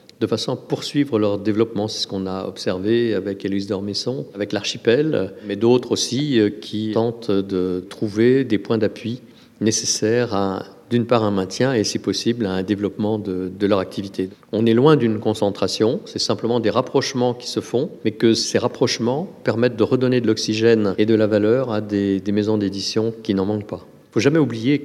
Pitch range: 105-125 Hz